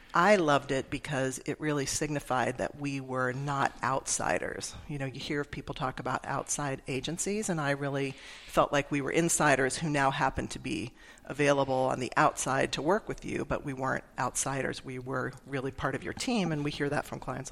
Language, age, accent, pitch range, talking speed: English, 40-59, American, 135-155 Hz, 200 wpm